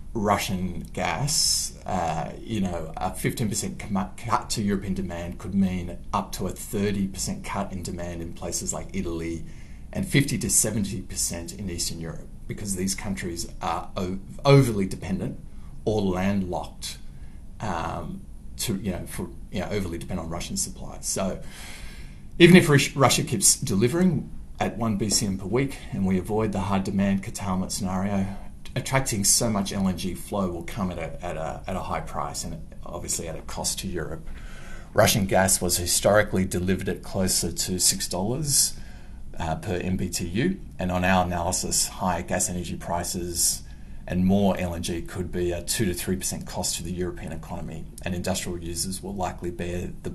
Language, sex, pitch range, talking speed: English, male, 85-105 Hz, 155 wpm